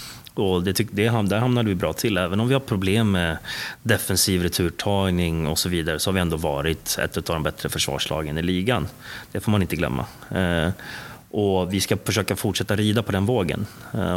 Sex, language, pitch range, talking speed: male, Swedish, 85-100 Hz, 200 wpm